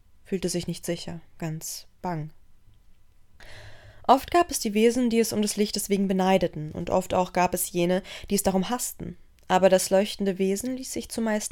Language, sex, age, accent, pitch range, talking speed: German, female, 20-39, German, 170-200 Hz, 180 wpm